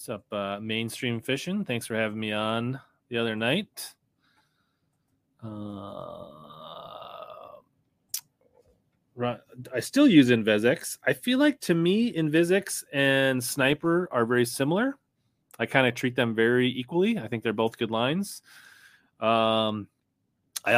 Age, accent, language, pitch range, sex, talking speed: 30-49, American, English, 110-150 Hz, male, 125 wpm